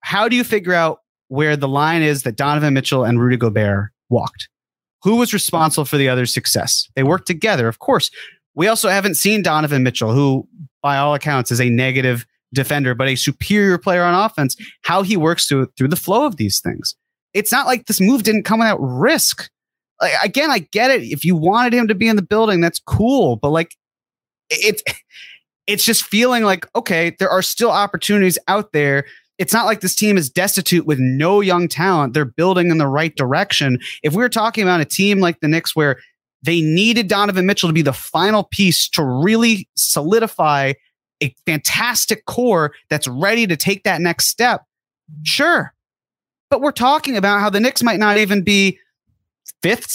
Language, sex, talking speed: English, male, 190 wpm